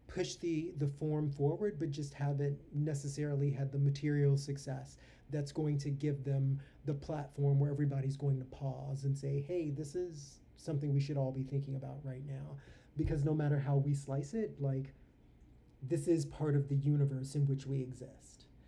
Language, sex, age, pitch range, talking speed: English, male, 30-49, 140-150 Hz, 185 wpm